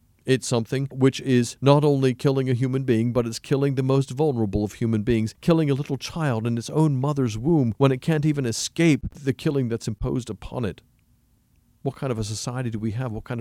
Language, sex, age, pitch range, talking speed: English, male, 50-69, 115-140 Hz, 220 wpm